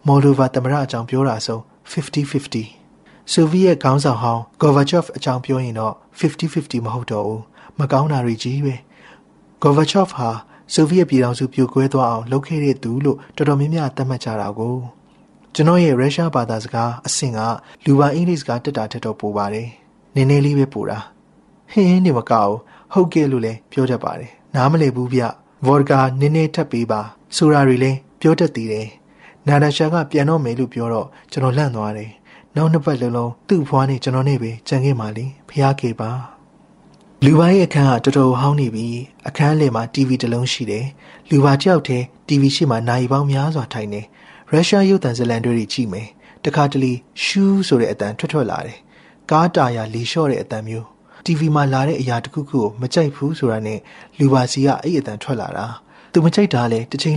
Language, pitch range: English, 120-150 Hz